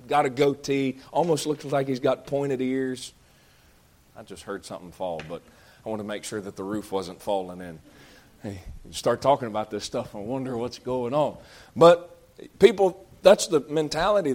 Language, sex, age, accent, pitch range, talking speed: English, male, 40-59, American, 120-155 Hz, 185 wpm